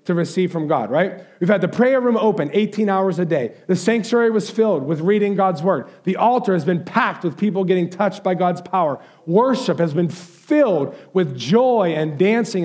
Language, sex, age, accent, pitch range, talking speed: English, male, 50-69, American, 165-205 Hz, 205 wpm